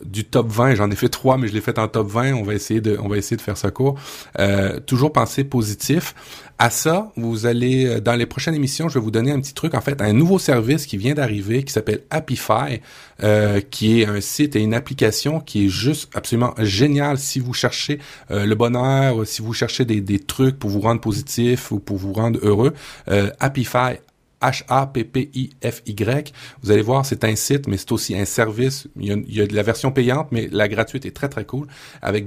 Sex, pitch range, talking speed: male, 110-135 Hz, 220 wpm